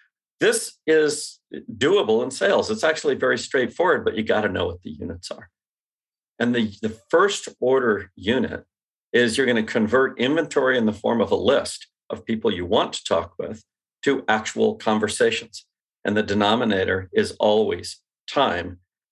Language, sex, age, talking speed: English, male, 50-69, 165 wpm